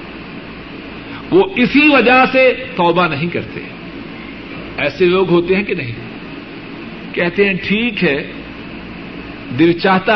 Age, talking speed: 60-79, 110 wpm